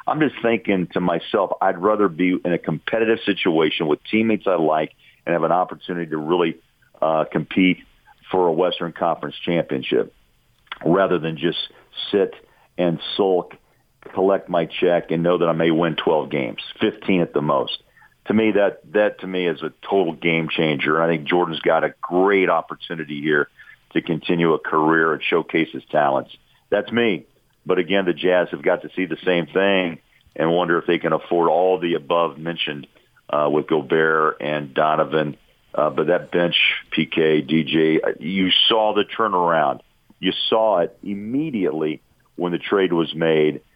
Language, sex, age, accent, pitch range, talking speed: English, male, 50-69, American, 80-95 Hz, 170 wpm